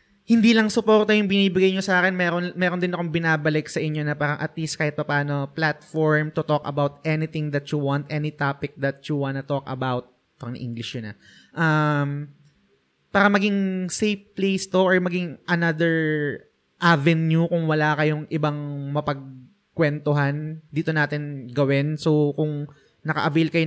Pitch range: 140-160 Hz